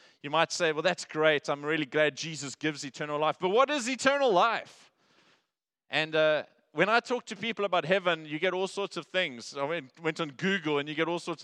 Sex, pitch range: male, 175-240 Hz